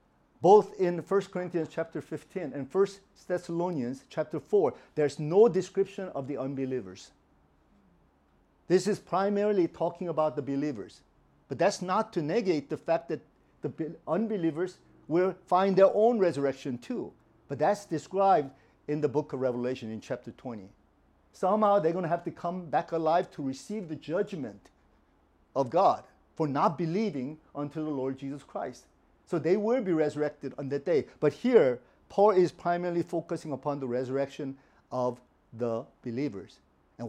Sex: male